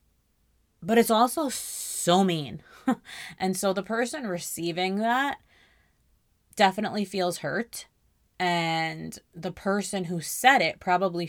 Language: English